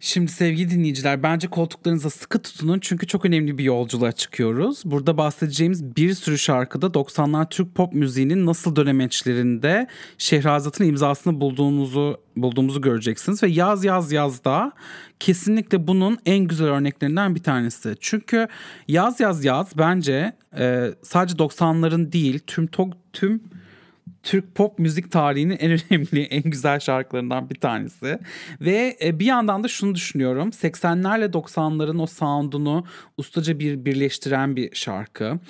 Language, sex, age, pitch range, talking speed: English, male, 40-59, 140-185 Hz, 135 wpm